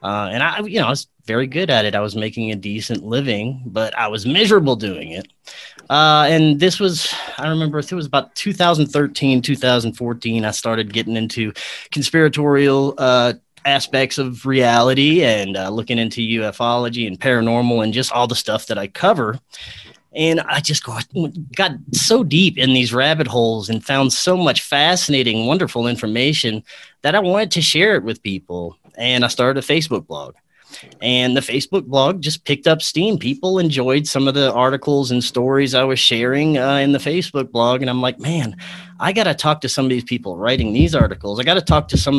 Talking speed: 190 wpm